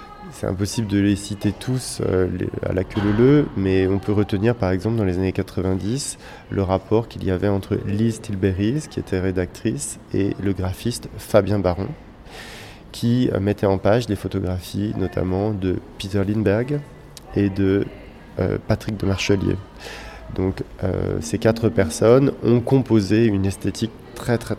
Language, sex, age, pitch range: French, male, 20-39, 95-115 Hz